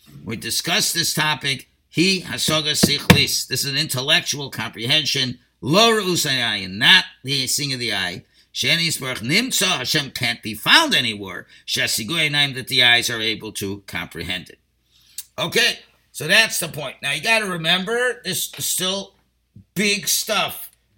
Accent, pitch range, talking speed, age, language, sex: American, 115-185 Hz, 125 wpm, 50-69, English, male